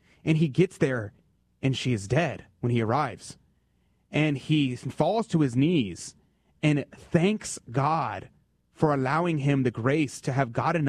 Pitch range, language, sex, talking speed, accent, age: 120-150 Hz, English, male, 155 wpm, American, 30-49